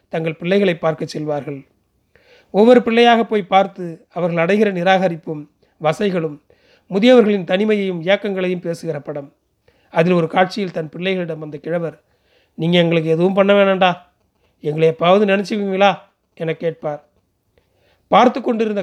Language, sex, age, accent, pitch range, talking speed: Tamil, male, 40-59, native, 160-200 Hz, 115 wpm